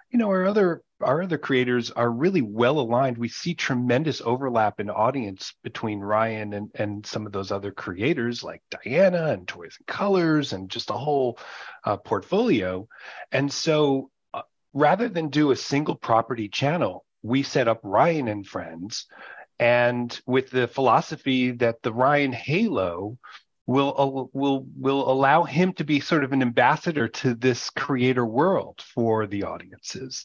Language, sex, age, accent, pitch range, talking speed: English, male, 30-49, American, 110-145 Hz, 155 wpm